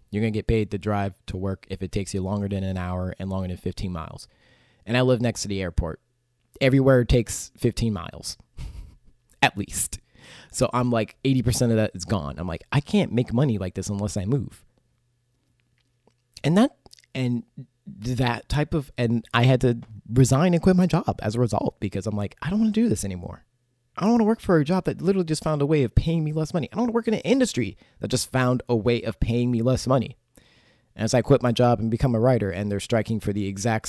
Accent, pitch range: American, 100-130 Hz